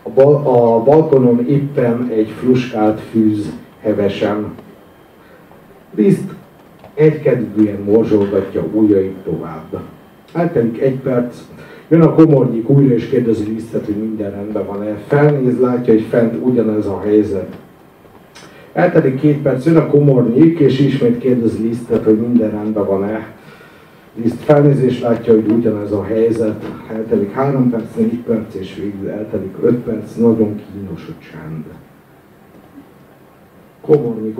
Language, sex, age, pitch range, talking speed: Hungarian, male, 50-69, 105-125 Hz, 120 wpm